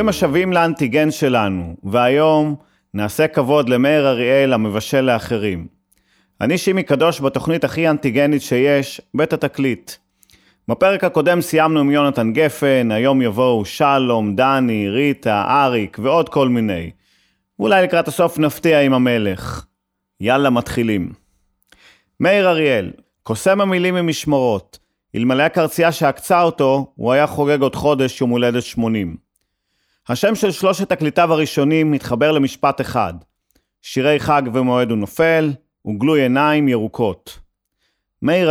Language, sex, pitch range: Hebrew, male, 115-155 Hz